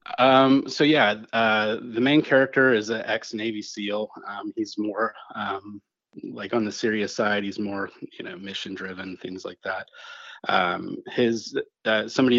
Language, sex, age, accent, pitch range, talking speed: English, male, 30-49, American, 95-115 Hz, 160 wpm